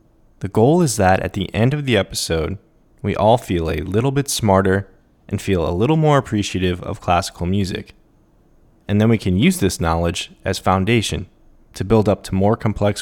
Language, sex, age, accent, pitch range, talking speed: English, male, 20-39, American, 90-115 Hz, 190 wpm